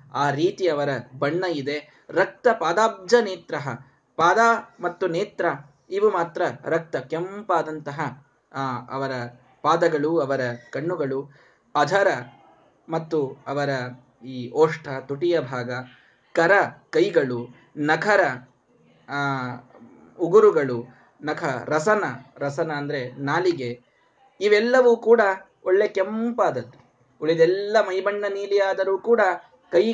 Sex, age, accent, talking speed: male, 20-39, native, 90 wpm